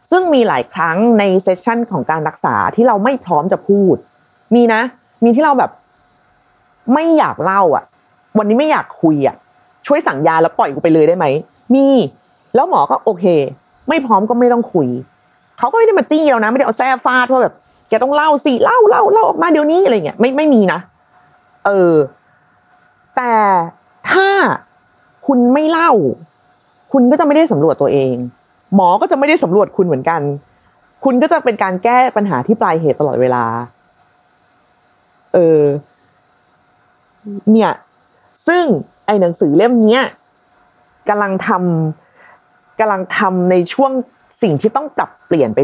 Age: 30-49